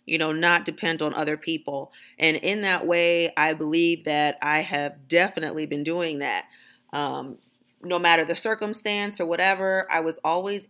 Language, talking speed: English, 170 wpm